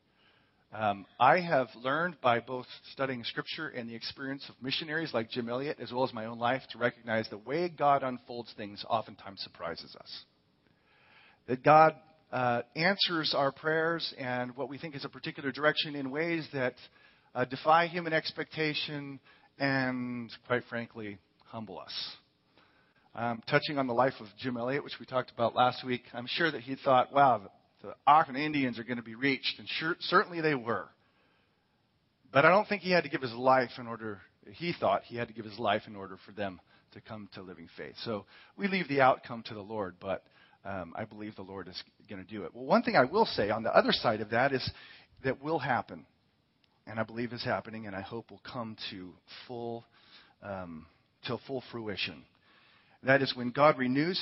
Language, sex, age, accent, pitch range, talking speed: English, male, 40-59, American, 115-145 Hz, 195 wpm